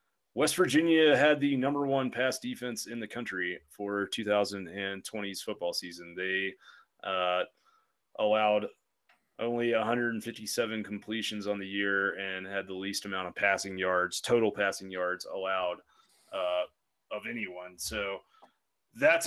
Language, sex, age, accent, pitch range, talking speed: English, male, 30-49, American, 100-120 Hz, 130 wpm